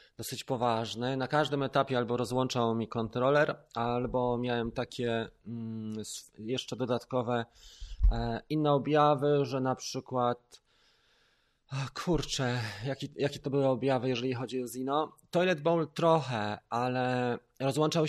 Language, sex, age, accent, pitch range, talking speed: Polish, male, 20-39, native, 120-145 Hz, 115 wpm